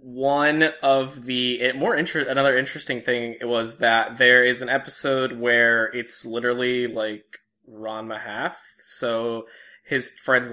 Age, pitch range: 10-29, 115-130 Hz